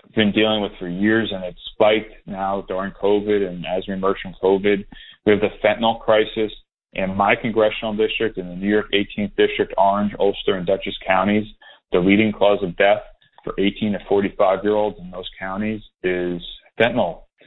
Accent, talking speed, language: American, 175 wpm, English